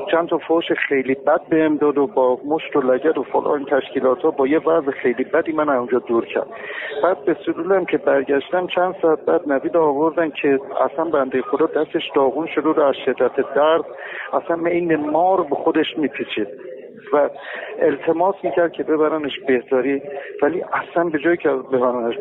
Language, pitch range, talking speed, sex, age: Persian, 130-165 Hz, 175 wpm, male, 50-69